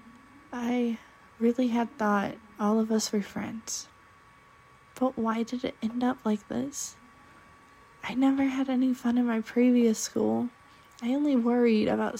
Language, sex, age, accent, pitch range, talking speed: English, female, 20-39, American, 215-255 Hz, 150 wpm